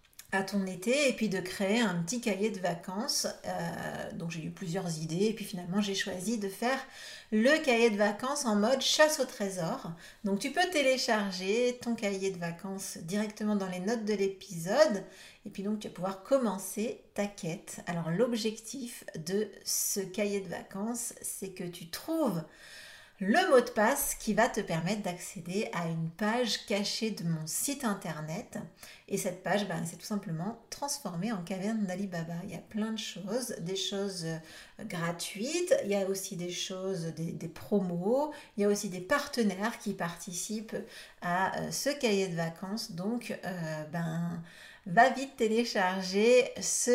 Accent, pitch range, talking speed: French, 185-230 Hz, 175 wpm